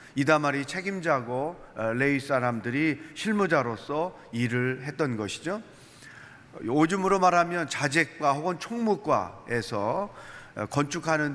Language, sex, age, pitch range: Korean, male, 40-59, 135-180 Hz